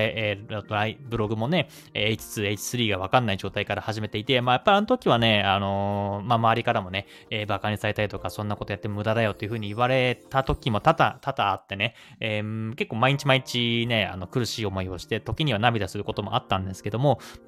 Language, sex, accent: Japanese, male, native